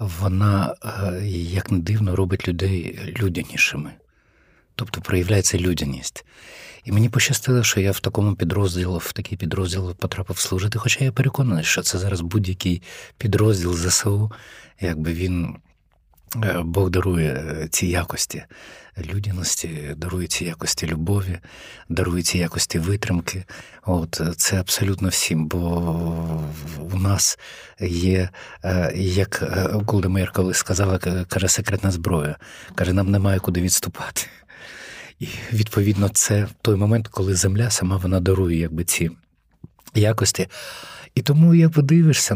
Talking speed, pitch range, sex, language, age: 120 wpm, 85-105 Hz, male, Ukrainian, 50-69